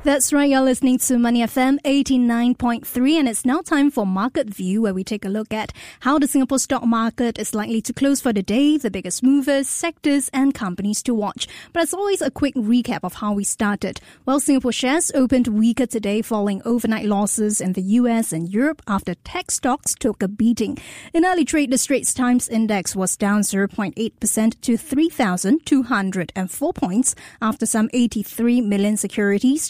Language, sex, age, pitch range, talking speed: English, female, 20-39, 210-265 Hz, 180 wpm